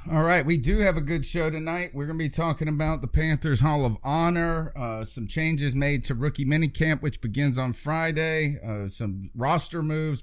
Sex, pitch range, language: male, 125-160 Hz, English